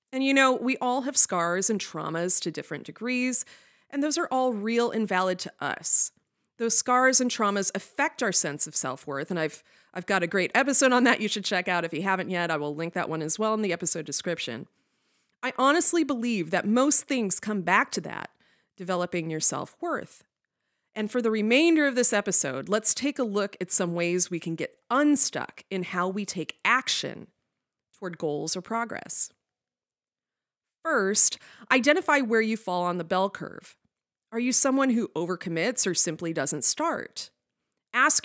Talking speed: 185 wpm